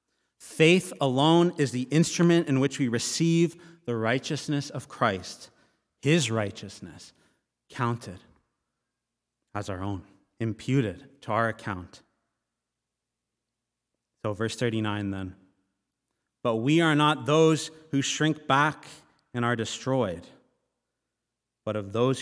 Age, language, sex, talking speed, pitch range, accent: 30-49, English, male, 110 wpm, 110-145 Hz, American